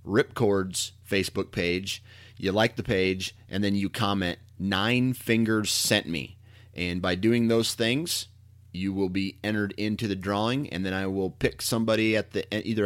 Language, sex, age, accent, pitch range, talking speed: English, male, 30-49, American, 95-110 Hz, 170 wpm